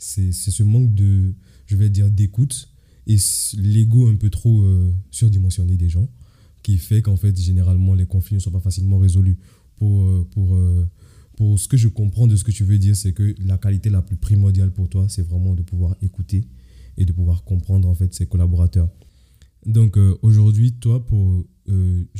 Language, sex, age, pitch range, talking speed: French, male, 20-39, 95-110 Hz, 190 wpm